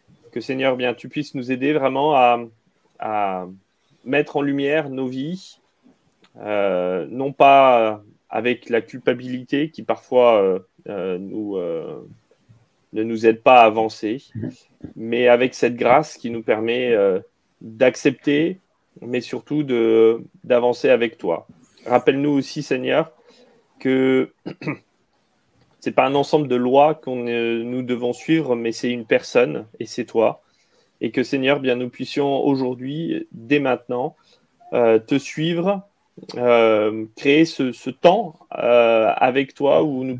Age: 30-49